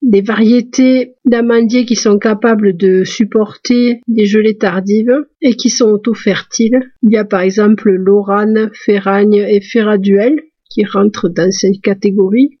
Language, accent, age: French, French, 50-69